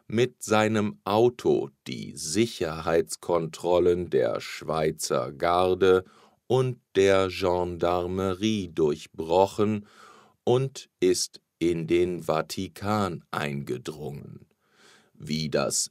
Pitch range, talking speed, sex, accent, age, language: 85-110 Hz, 75 wpm, male, German, 50-69, English